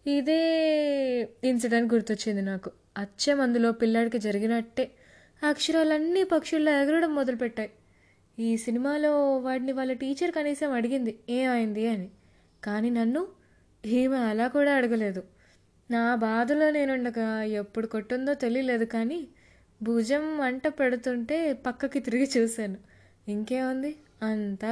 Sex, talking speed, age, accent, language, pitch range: female, 95 wpm, 20-39, native, Telugu, 225-285 Hz